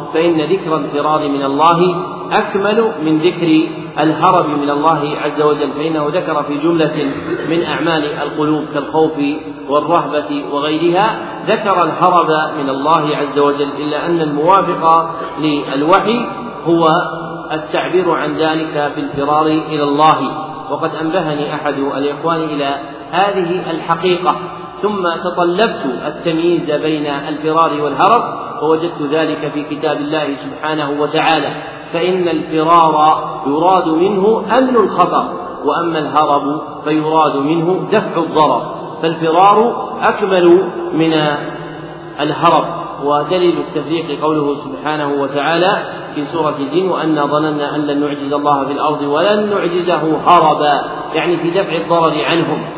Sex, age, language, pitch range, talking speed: male, 40-59, Arabic, 150-170 Hz, 115 wpm